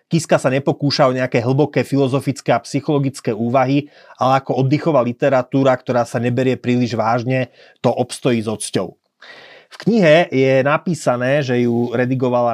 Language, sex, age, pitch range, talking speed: Slovak, male, 30-49, 125-150 Hz, 140 wpm